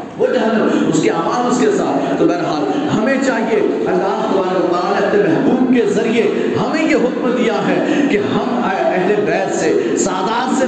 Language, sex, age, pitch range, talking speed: Urdu, male, 40-59, 225-290 Hz, 145 wpm